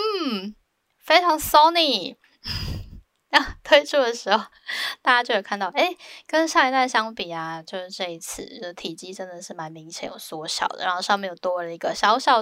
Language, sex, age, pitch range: Chinese, female, 10-29, 175-255 Hz